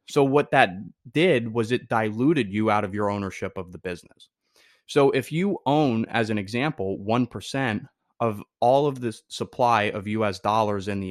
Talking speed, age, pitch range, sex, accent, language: 180 wpm, 20-39, 100-125 Hz, male, American, English